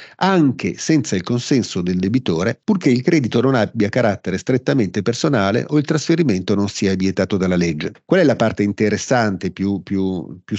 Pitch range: 105-155 Hz